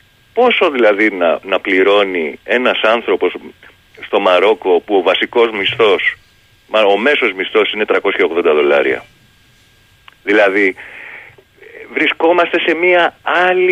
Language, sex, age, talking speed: Greek, male, 40-59, 105 wpm